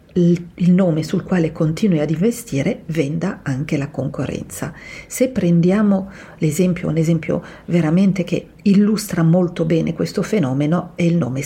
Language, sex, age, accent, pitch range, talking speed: Italian, female, 50-69, native, 150-185 Hz, 135 wpm